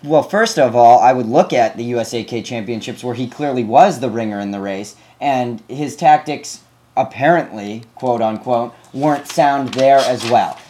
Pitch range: 115-145 Hz